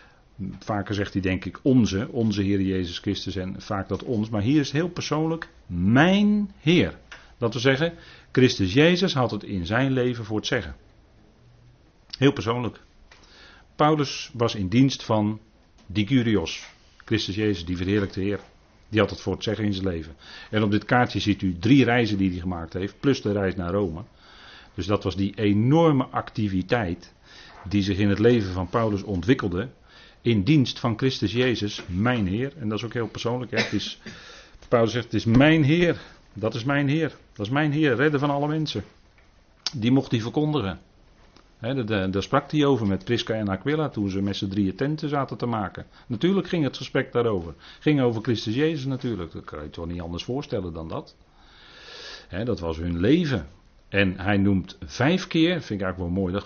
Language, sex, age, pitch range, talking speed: Dutch, male, 40-59, 95-135 Hz, 185 wpm